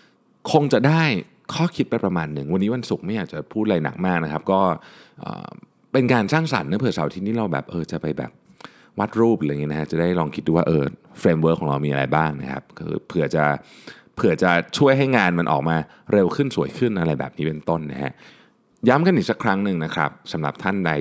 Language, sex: Thai, male